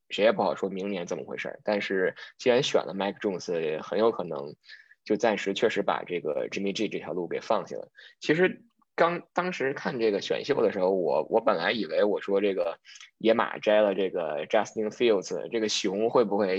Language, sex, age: Chinese, male, 20-39